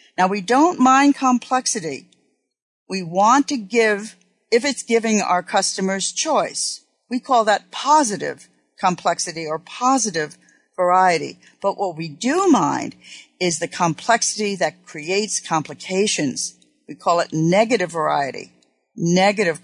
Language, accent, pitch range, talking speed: English, American, 175-230 Hz, 120 wpm